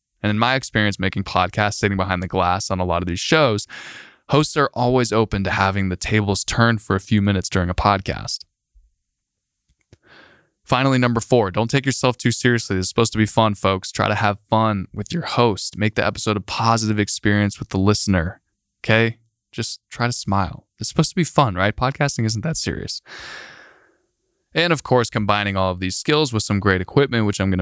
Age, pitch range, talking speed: 10-29, 95-115 Hz, 200 wpm